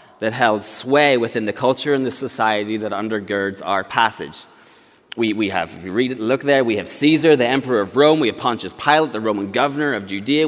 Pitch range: 115-155 Hz